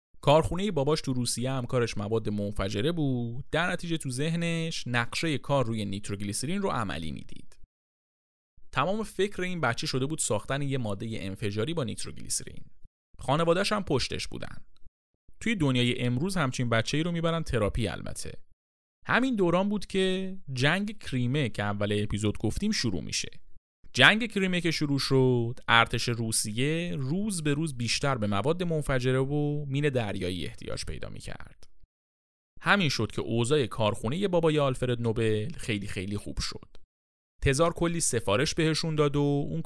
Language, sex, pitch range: Persian, male, 105-160 Hz